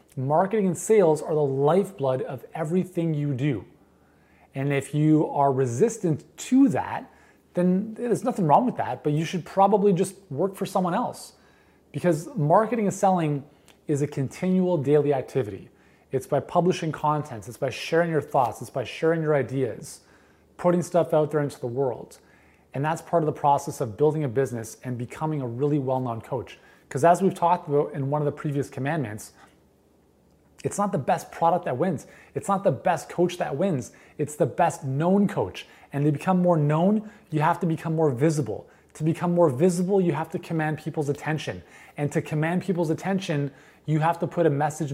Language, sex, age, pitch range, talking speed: English, male, 30-49, 135-175 Hz, 185 wpm